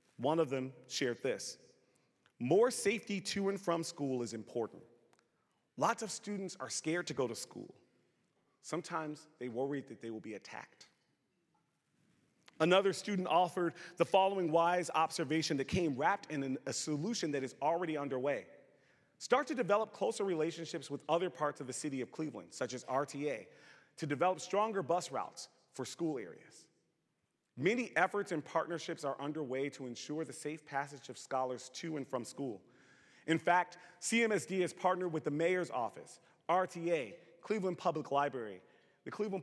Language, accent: English, American